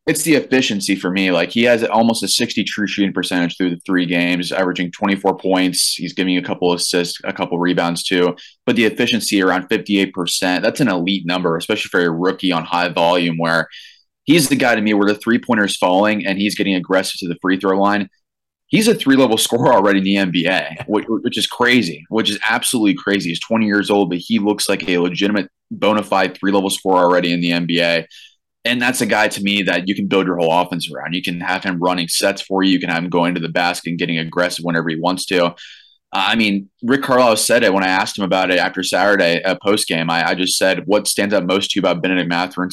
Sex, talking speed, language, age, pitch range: male, 235 wpm, English, 20-39, 90-100 Hz